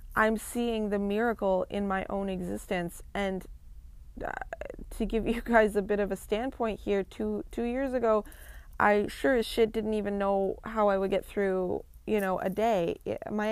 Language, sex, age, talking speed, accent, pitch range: English, female, 20-39, 180 wpm, American, 190-220 Hz